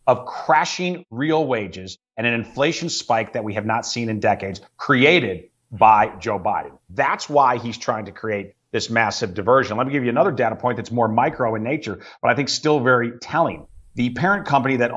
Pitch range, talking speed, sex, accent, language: 110-145 Hz, 200 wpm, male, American, English